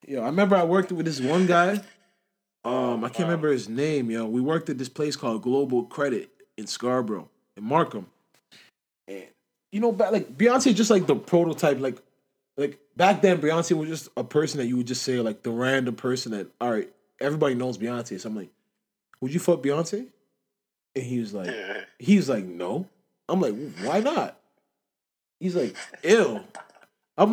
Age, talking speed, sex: 20-39, 185 wpm, male